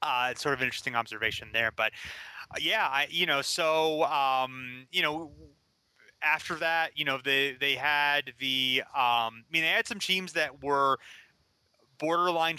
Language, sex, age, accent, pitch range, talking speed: English, male, 30-49, American, 120-140 Hz, 170 wpm